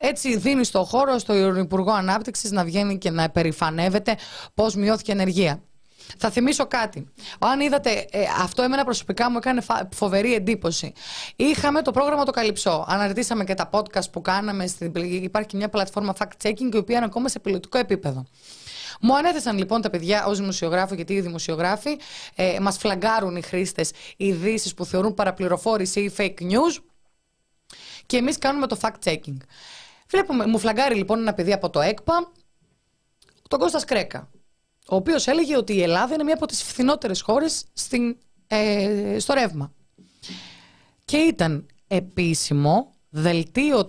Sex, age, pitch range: female, 20-39, 180-235 Hz